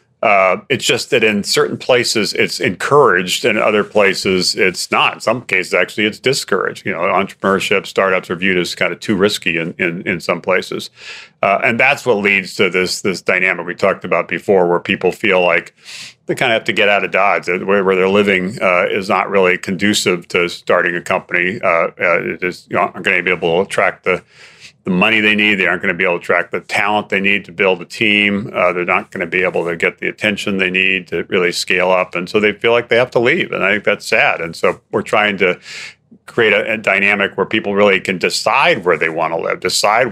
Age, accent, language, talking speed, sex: 40-59, American, English, 240 wpm, male